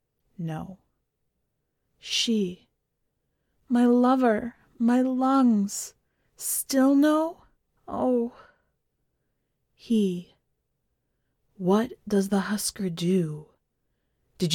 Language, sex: English, female